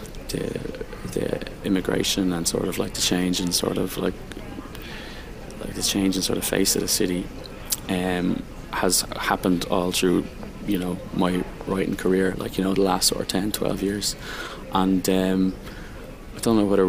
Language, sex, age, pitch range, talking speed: English, male, 20-39, 90-95 Hz, 180 wpm